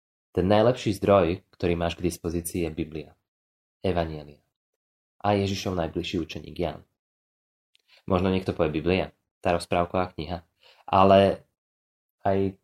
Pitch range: 85-105 Hz